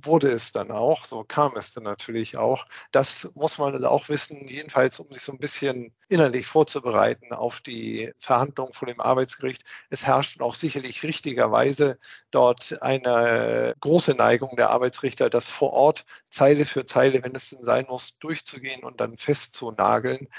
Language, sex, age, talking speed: German, male, 50-69, 165 wpm